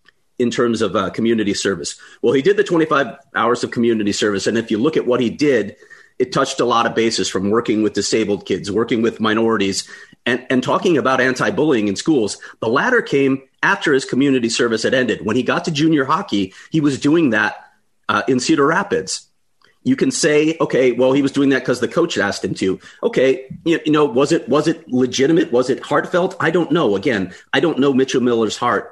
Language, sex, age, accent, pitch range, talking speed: English, male, 40-59, American, 115-155 Hz, 215 wpm